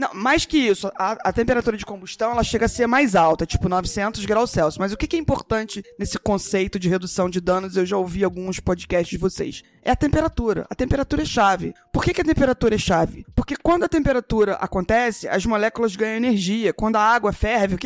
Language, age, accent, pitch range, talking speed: Portuguese, 20-39, Brazilian, 195-250 Hz, 215 wpm